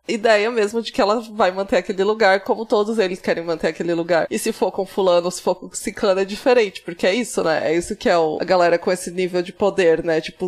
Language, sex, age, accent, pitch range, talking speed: Portuguese, female, 20-39, Brazilian, 175-215 Hz, 260 wpm